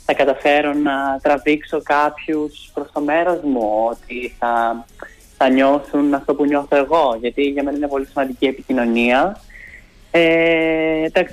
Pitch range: 125-155 Hz